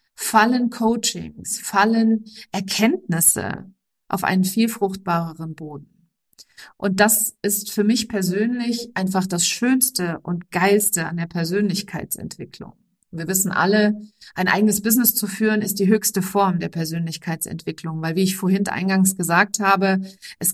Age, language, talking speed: 40-59, German, 130 wpm